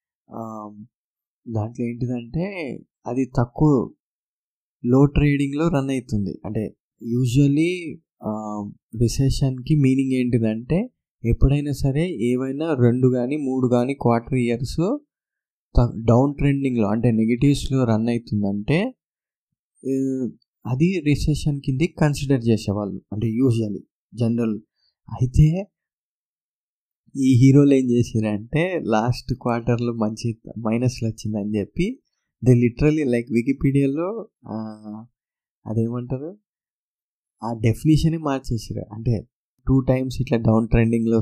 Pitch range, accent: 110-135 Hz, native